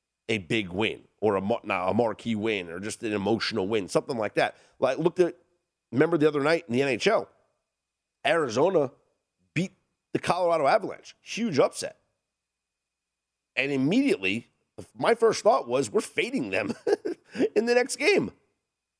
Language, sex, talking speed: English, male, 145 wpm